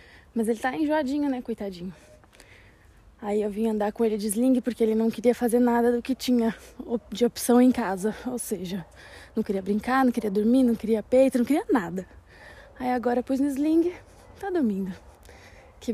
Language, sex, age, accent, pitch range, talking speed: Portuguese, female, 20-39, Brazilian, 215-260 Hz, 190 wpm